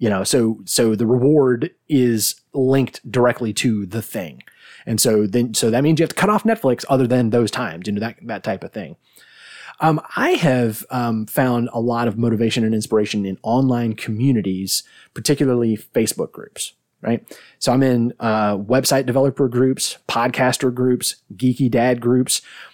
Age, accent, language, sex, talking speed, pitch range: 30-49, American, English, male, 170 wpm, 115-140 Hz